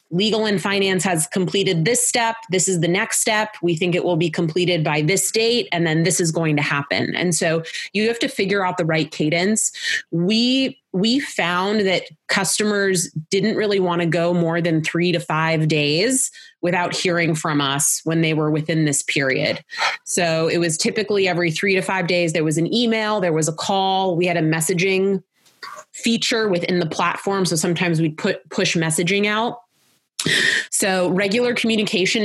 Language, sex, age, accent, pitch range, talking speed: English, female, 20-39, American, 165-205 Hz, 180 wpm